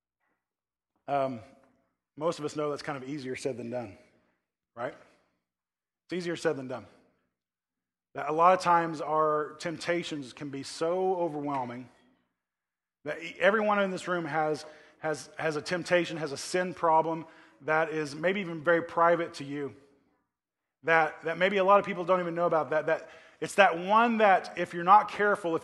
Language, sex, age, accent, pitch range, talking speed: English, male, 20-39, American, 145-180 Hz, 170 wpm